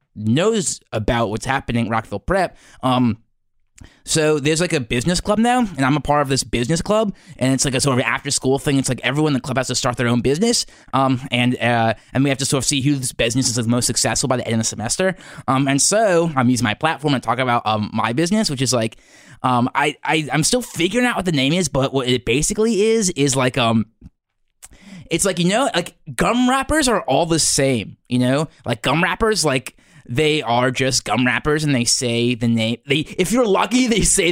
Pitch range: 120-160 Hz